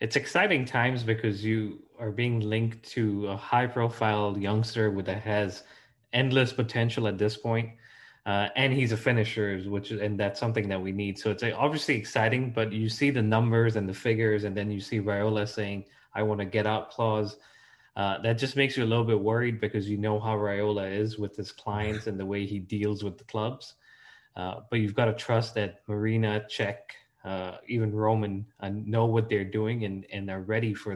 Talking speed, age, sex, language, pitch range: 200 wpm, 20-39, male, English, 100-115 Hz